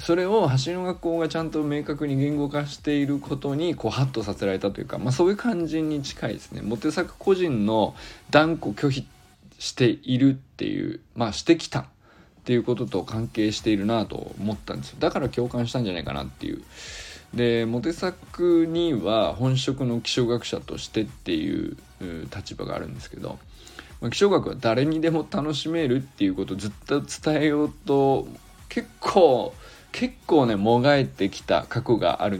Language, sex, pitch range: Japanese, male, 110-160 Hz